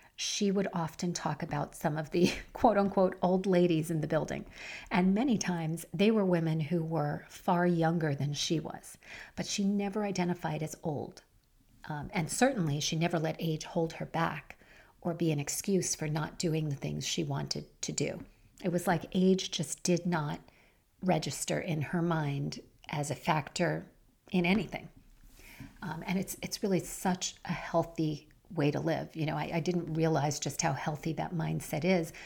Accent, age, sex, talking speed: American, 40-59, female, 175 wpm